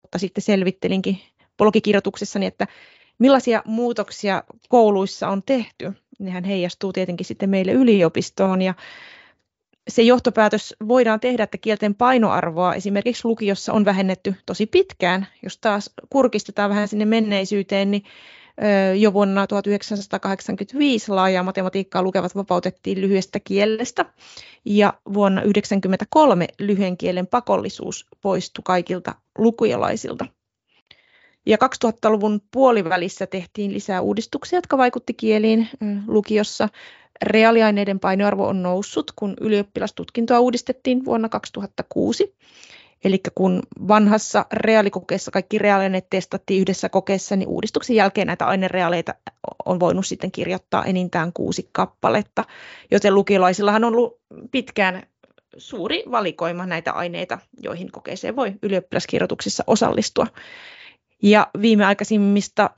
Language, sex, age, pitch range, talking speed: Finnish, female, 30-49, 190-225 Hz, 105 wpm